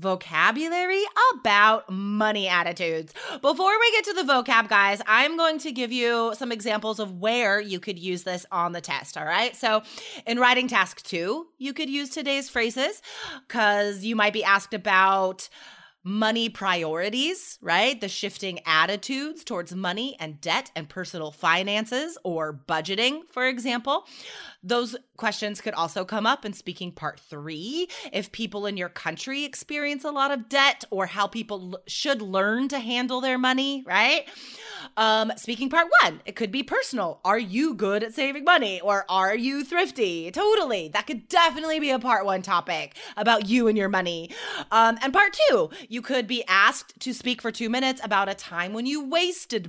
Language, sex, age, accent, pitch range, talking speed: English, female, 30-49, American, 190-275 Hz, 175 wpm